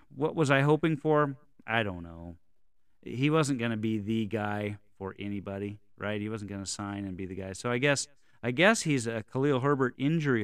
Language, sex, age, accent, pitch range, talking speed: English, male, 30-49, American, 105-140 Hz, 215 wpm